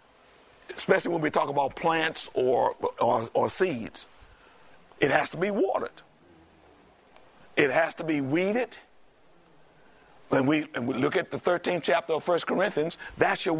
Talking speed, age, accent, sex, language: 150 wpm, 60-79, American, male, English